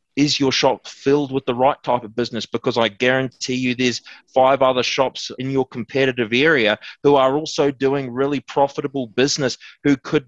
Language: English